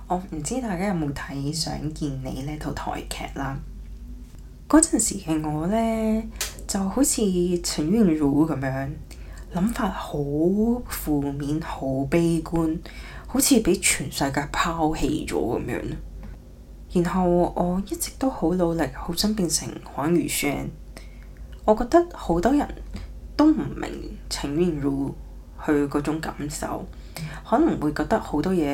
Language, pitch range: Chinese, 140-190 Hz